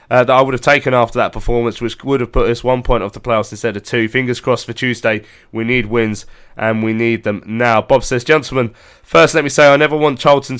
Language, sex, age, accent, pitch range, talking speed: English, male, 20-39, British, 120-140 Hz, 255 wpm